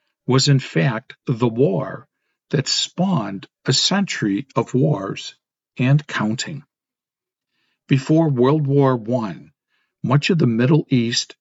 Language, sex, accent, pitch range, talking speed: English, male, American, 125-155 Hz, 115 wpm